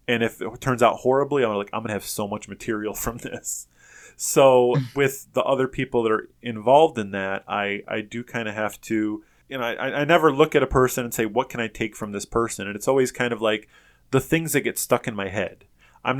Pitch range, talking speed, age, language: 100-125 Hz, 250 wpm, 20-39, English